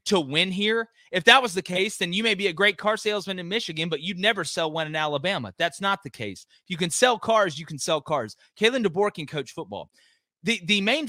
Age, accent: 30-49, American